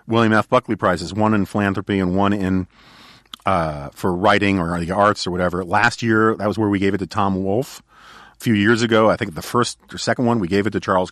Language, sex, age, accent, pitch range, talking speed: English, male, 40-59, American, 100-120 Hz, 245 wpm